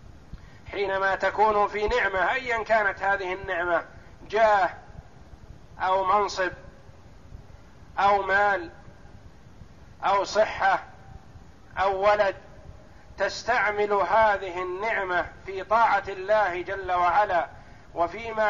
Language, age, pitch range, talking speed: Arabic, 50-69, 140-195 Hz, 85 wpm